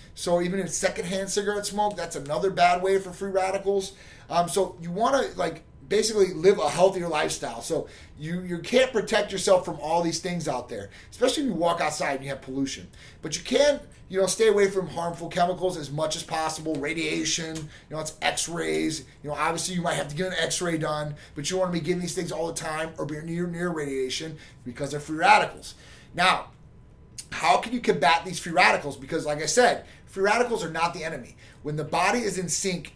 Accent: American